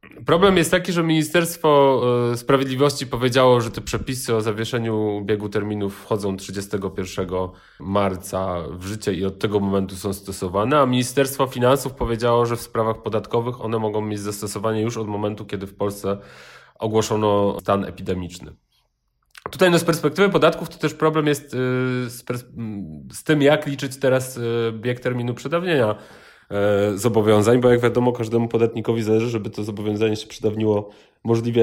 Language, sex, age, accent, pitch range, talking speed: Polish, male, 30-49, native, 105-130 Hz, 140 wpm